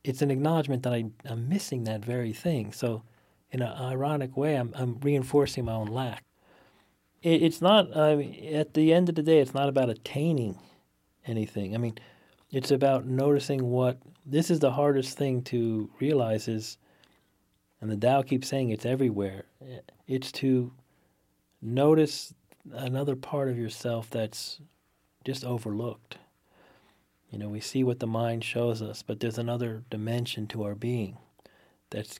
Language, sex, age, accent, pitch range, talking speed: English, male, 40-59, American, 110-135 Hz, 160 wpm